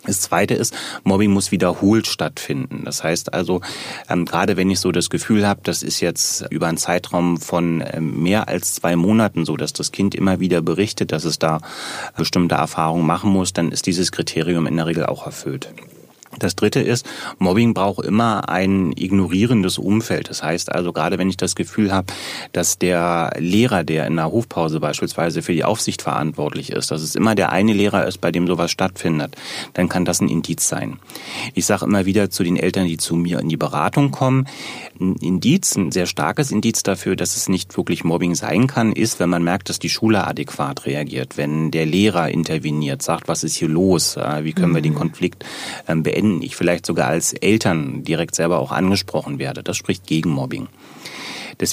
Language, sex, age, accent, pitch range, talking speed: German, male, 30-49, German, 80-95 Hz, 190 wpm